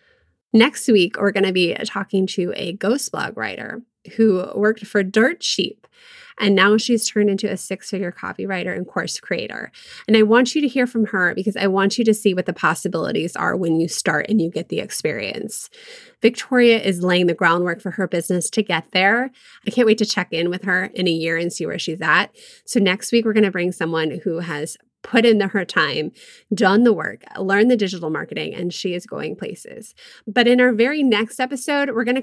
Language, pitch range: English, 185-240 Hz